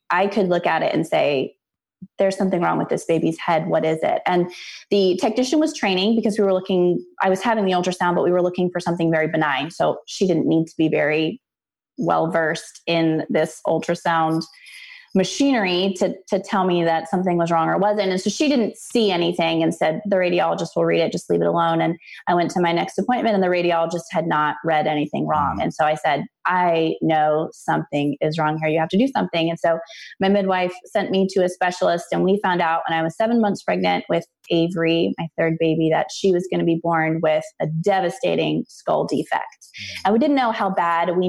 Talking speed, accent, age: 220 wpm, American, 20-39